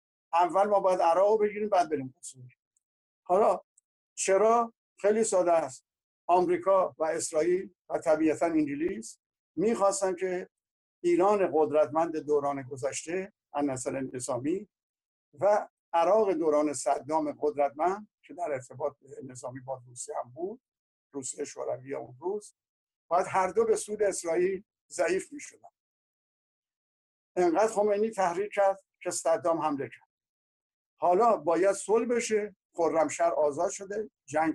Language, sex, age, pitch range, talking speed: Persian, male, 60-79, 155-220 Hz, 115 wpm